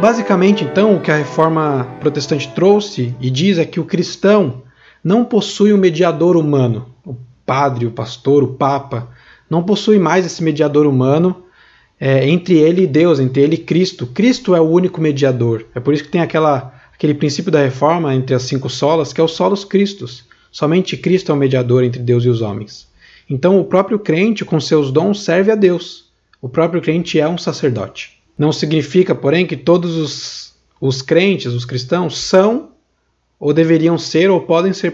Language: Portuguese